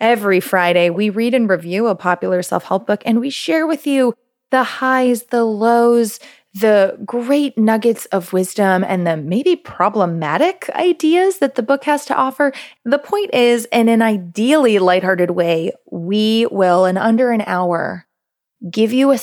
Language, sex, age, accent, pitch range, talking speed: English, female, 20-39, American, 180-245 Hz, 160 wpm